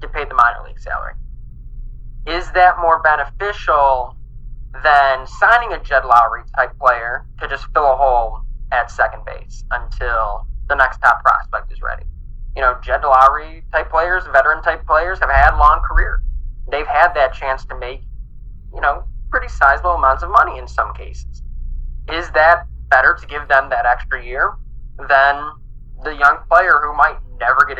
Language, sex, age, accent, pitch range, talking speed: English, male, 10-29, American, 105-150 Hz, 170 wpm